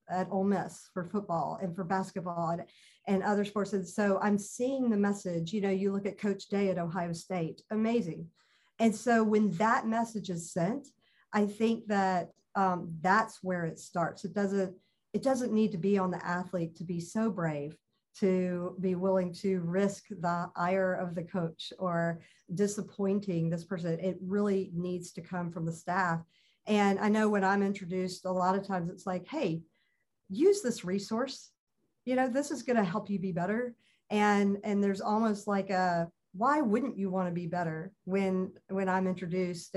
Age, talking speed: 50-69, 185 wpm